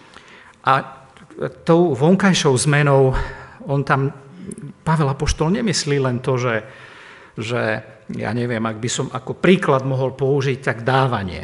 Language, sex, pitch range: Slovak, male, 125-155 Hz